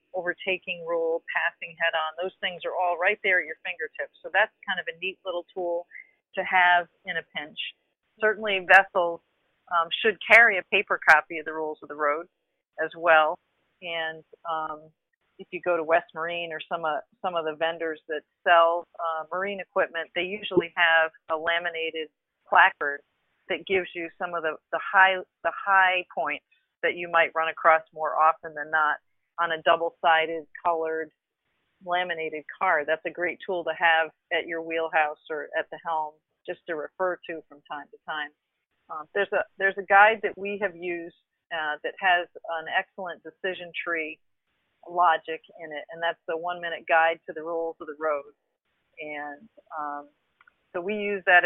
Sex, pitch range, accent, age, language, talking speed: female, 160-185 Hz, American, 40-59, English, 175 wpm